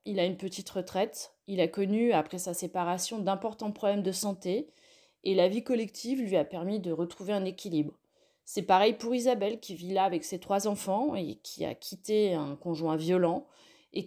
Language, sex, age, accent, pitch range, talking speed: French, female, 30-49, French, 185-225 Hz, 190 wpm